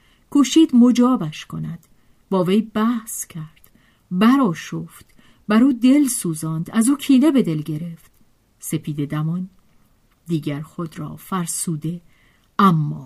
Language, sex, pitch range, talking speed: Persian, female, 160-230 Hz, 110 wpm